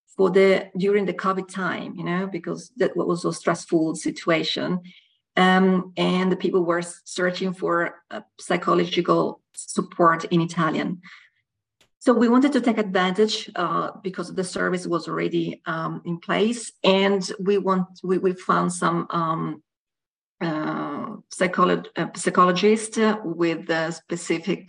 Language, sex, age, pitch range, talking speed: Italian, female, 40-59, 175-200 Hz, 135 wpm